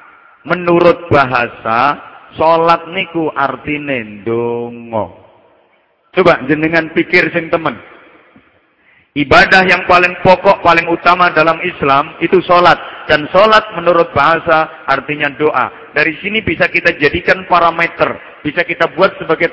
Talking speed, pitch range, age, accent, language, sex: 115 wpm, 145-190 Hz, 50-69, Indonesian, English, male